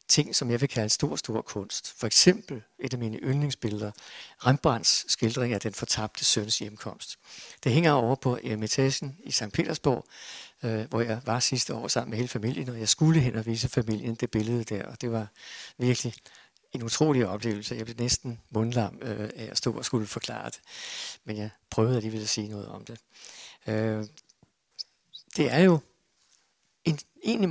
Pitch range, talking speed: 115-140 Hz, 180 wpm